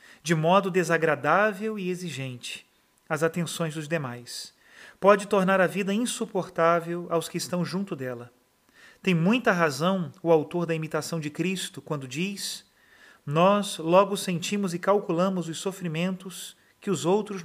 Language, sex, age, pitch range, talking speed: Portuguese, male, 40-59, 160-190 Hz, 140 wpm